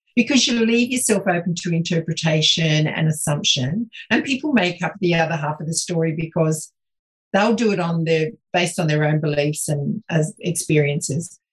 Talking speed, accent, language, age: 170 wpm, Australian, English, 50-69